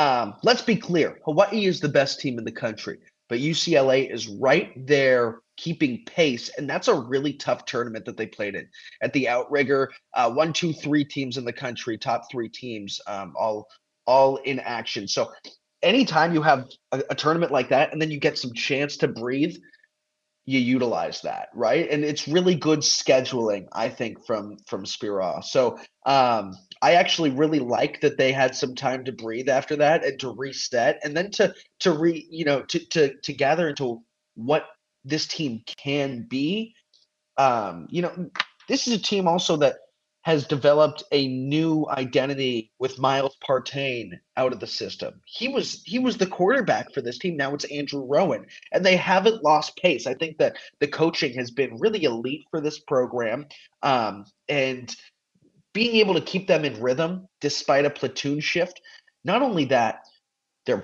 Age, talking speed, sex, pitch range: 30-49, 180 wpm, male, 130-170 Hz